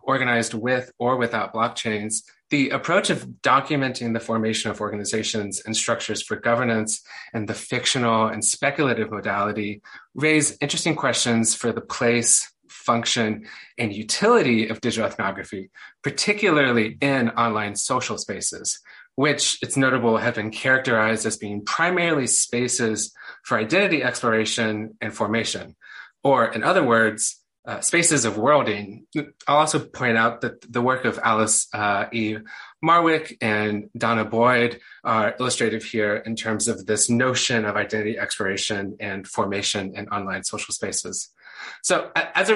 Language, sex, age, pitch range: English, male, 30-49, 110-130 Hz